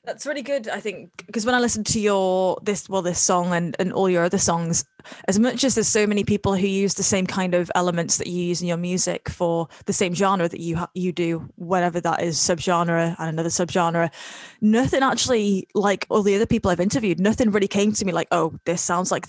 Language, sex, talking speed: English, female, 235 wpm